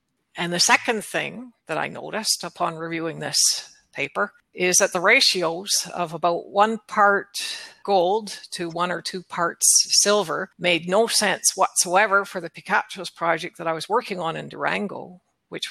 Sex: female